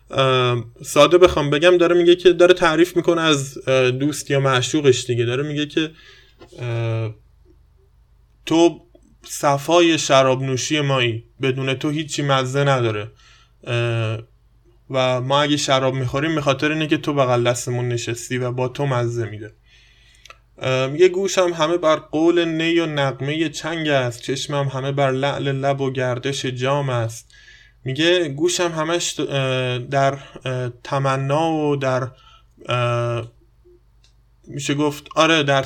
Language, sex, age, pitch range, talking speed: Persian, male, 20-39, 125-150 Hz, 125 wpm